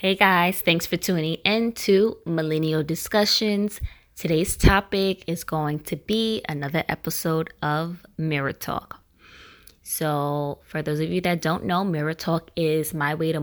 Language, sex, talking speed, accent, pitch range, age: English, female, 150 wpm, American, 150-175 Hz, 20-39